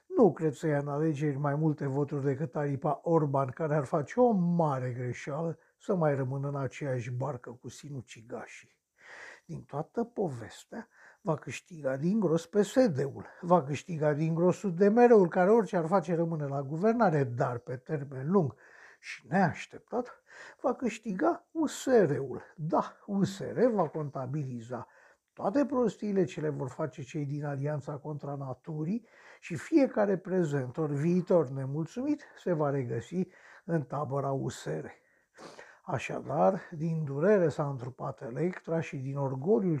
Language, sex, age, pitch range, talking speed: Romanian, male, 60-79, 140-180 Hz, 135 wpm